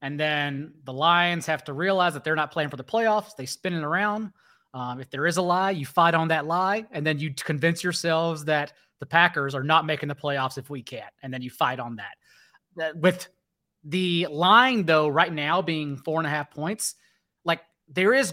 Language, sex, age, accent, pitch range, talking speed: English, male, 30-49, American, 155-190 Hz, 215 wpm